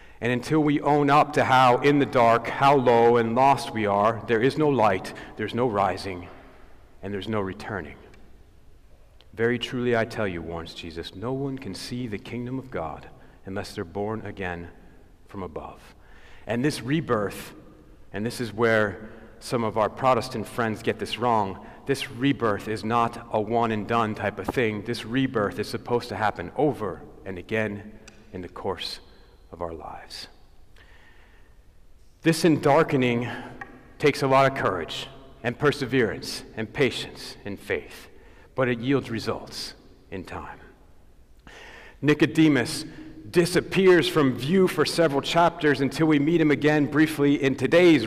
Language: English